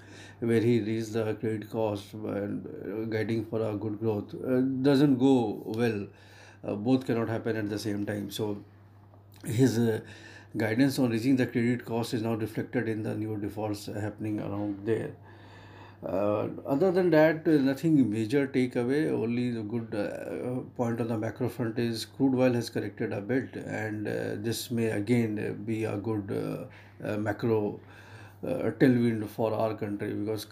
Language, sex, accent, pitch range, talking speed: English, male, Indian, 105-120 Hz, 165 wpm